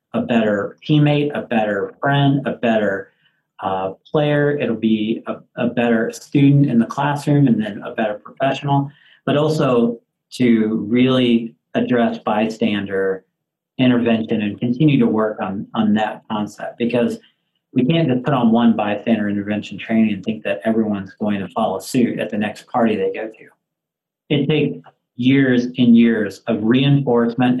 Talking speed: 155 wpm